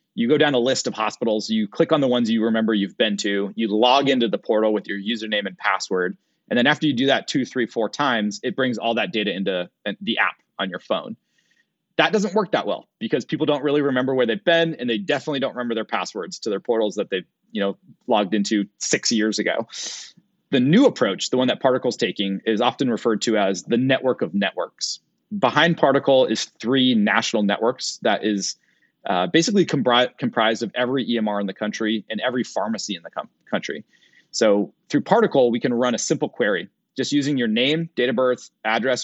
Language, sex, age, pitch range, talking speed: English, male, 30-49, 110-150 Hz, 210 wpm